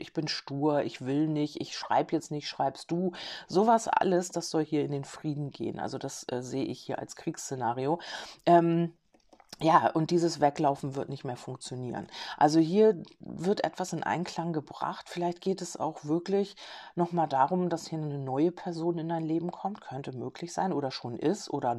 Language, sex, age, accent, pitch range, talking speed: German, female, 40-59, German, 145-175 Hz, 185 wpm